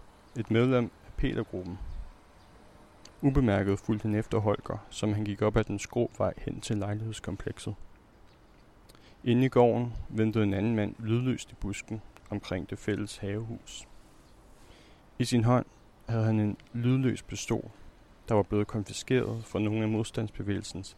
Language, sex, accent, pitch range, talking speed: Danish, male, native, 100-115 Hz, 140 wpm